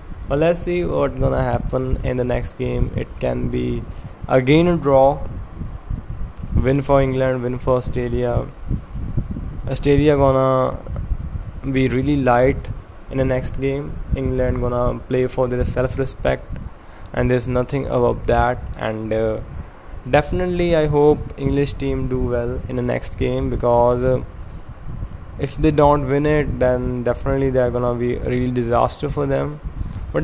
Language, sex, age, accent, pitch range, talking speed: English, male, 20-39, Indian, 115-135 Hz, 150 wpm